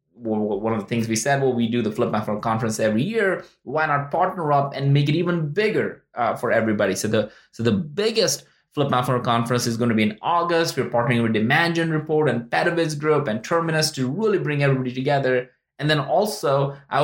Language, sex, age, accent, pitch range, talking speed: English, male, 20-39, Indian, 125-170 Hz, 210 wpm